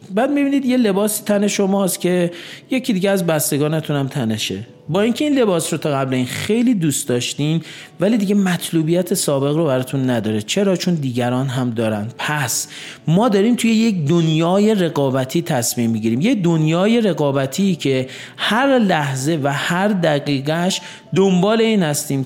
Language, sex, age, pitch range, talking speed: Persian, male, 40-59, 135-195 Hz, 155 wpm